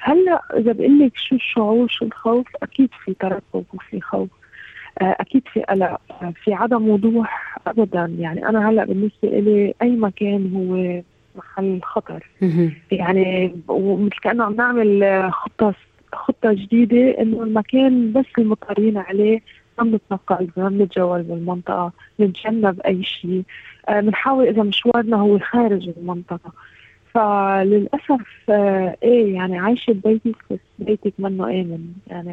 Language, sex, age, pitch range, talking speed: Arabic, female, 20-39, 190-230 Hz, 120 wpm